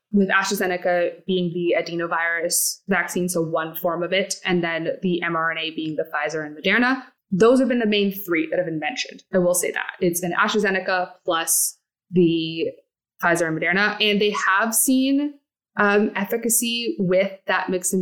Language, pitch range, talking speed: English, 170-210 Hz, 175 wpm